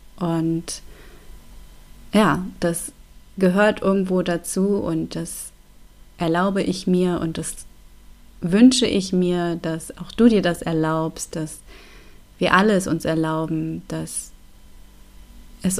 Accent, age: German, 30-49